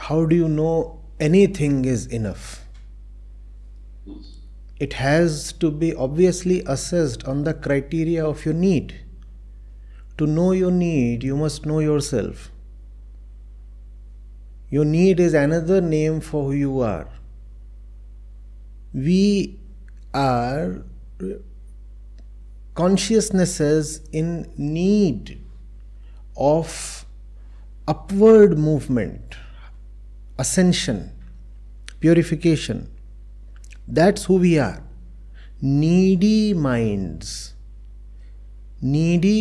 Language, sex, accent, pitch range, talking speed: English, male, Indian, 125-175 Hz, 80 wpm